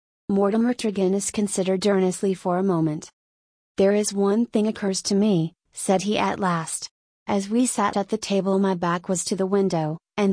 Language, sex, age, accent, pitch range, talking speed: English, female, 30-49, American, 180-205 Hz, 180 wpm